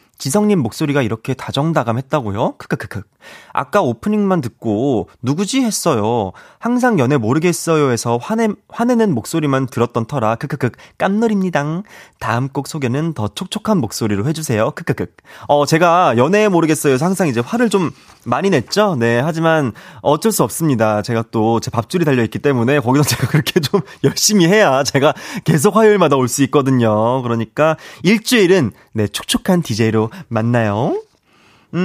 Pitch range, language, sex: 120-190 Hz, Korean, male